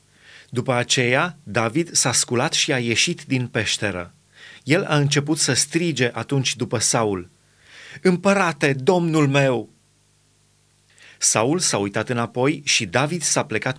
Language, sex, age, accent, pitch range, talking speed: Romanian, male, 30-49, native, 130-170 Hz, 125 wpm